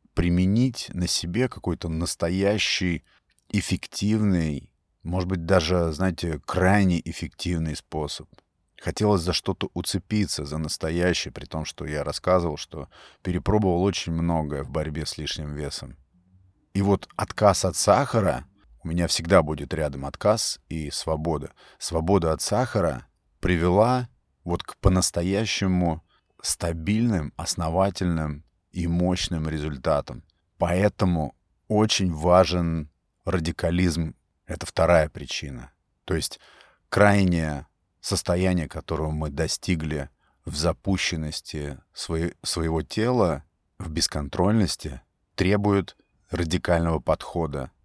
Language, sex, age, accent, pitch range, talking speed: Russian, male, 30-49, native, 80-95 Hz, 100 wpm